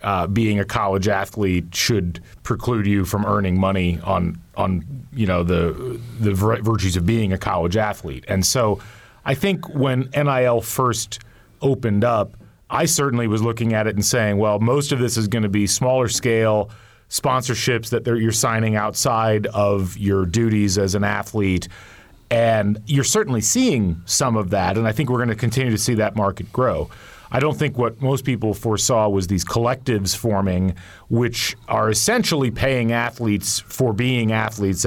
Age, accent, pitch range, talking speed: 40-59, American, 100-125 Hz, 170 wpm